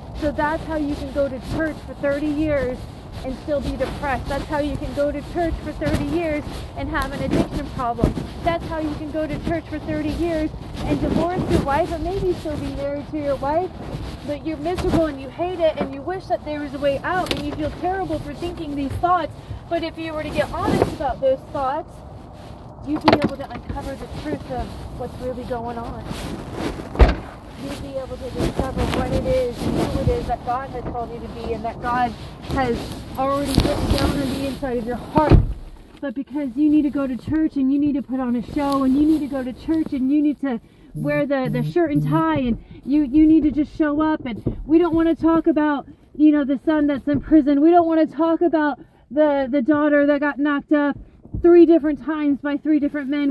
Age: 30-49